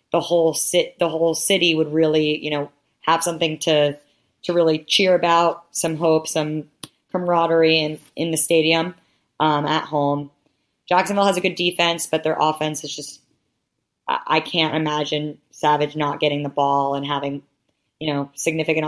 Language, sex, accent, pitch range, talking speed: English, female, American, 150-165 Hz, 155 wpm